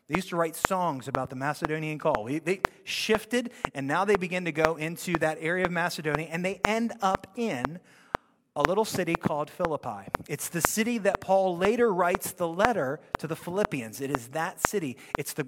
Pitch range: 160-215 Hz